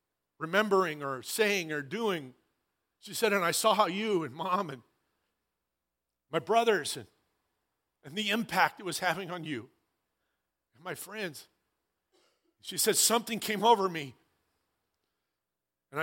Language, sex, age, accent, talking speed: English, male, 50-69, American, 135 wpm